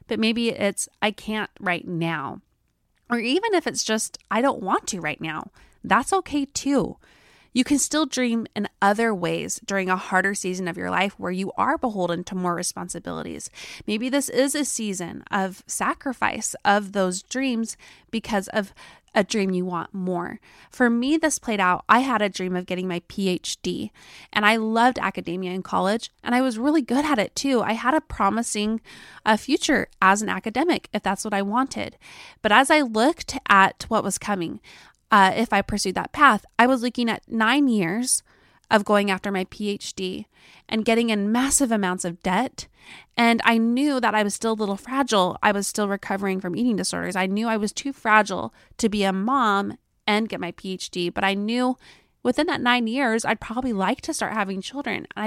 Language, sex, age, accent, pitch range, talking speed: English, female, 20-39, American, 195-255 Hz, 195 wpm